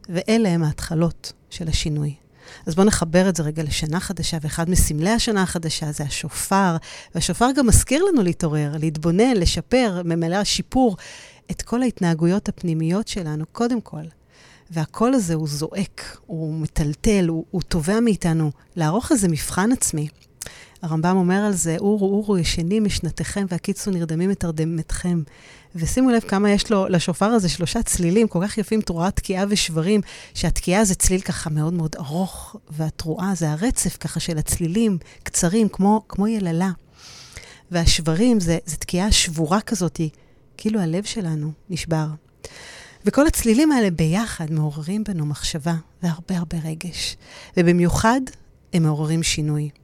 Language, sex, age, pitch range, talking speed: Hebrew, female, 40-59, 160-205 Hz, 140 wpm